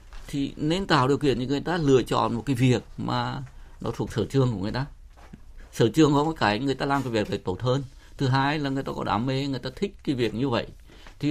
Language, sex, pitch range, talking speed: Vietnamese, male, 115-150 Hz, 260 wpm